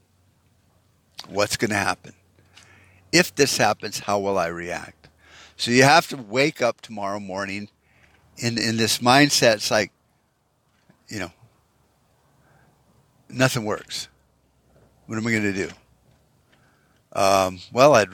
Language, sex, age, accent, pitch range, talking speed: English, male, 50-69, American, 95-125 Hz, 125 wpm